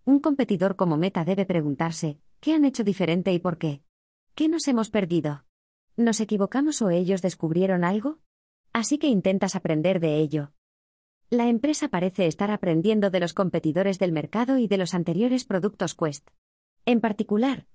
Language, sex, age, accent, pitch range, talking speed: Spanish, female, 20-39, Spanish, 165-220 Hz, 160 wpm